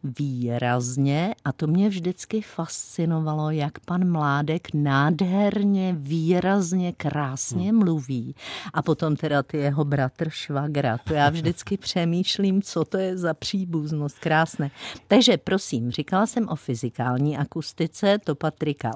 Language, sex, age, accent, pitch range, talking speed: Czech, female, 50-69, native, 145-190 Hz, 125 wpm